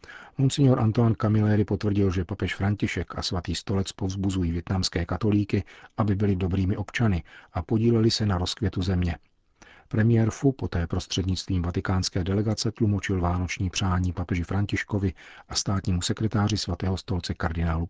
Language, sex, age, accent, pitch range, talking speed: Czech, male, 40-59, native, 90-105 Hz, 135 wpm